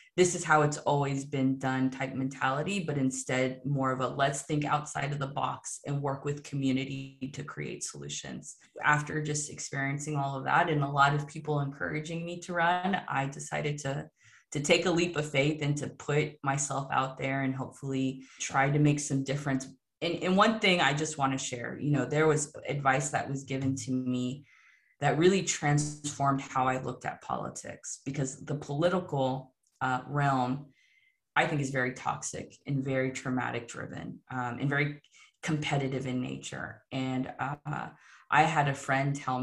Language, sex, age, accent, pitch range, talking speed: English, female, 20-39, American, 135-150 Hz, 180 wpm